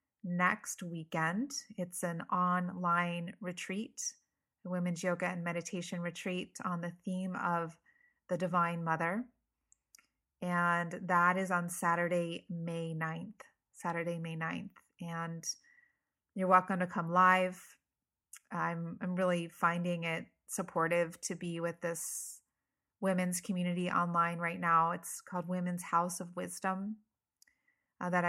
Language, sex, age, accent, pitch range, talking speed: English, female, 30-49, American, 170-190 Hz, 120 wpm